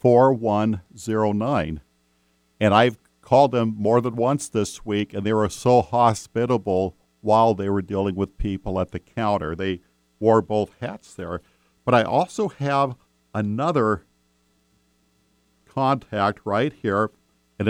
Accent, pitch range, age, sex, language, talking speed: American, 90-115 Hz, 50-69, male, English, 130 wpm